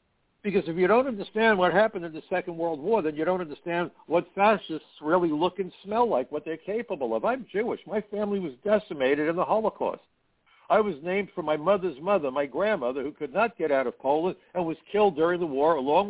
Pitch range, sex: 125-180 Hz, male